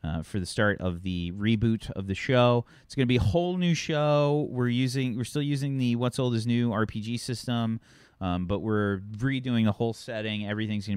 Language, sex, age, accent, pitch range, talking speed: English, male, 30-49, American, 95-120 Hz, 215 wpm